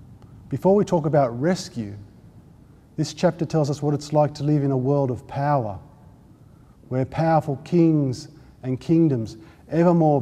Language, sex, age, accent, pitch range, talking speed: English, male, 50-69, Australian, 125-155 Hz, 155 wpm